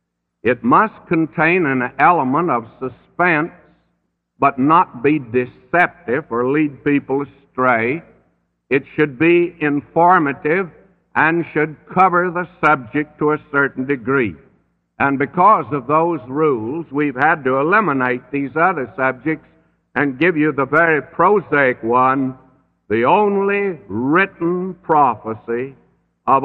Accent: American